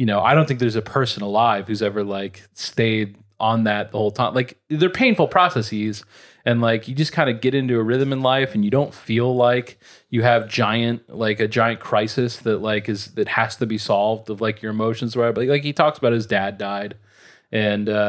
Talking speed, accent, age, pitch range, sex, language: 220 wpm, American, 30-49, 105-130 Hz, male, English